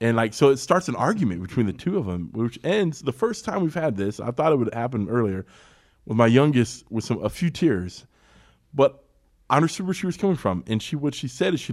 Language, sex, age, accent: English, male, 20-39, American